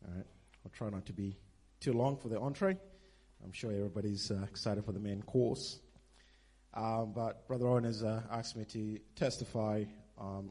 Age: 30-49